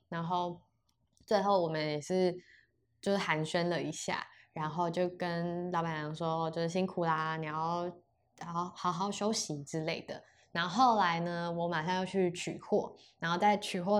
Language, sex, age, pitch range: Chinese, female, 20-39, 160-200 Hz